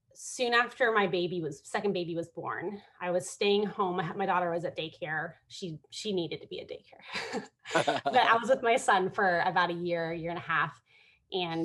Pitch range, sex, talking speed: 170-205 Hz, female, 205 wpm